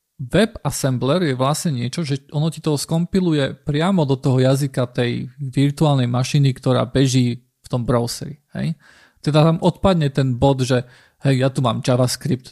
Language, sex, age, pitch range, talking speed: Slovak, male, 40-59, 130-150 Hz, 165 wpm